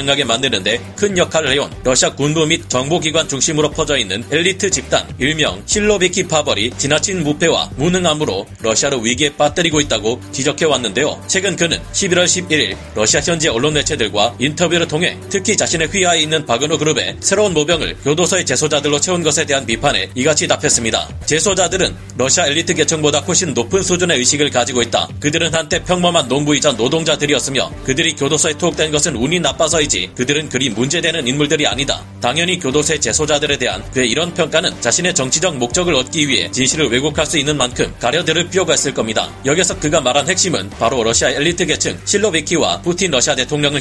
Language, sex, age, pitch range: Korean, male, 40-59, 130-170 Hz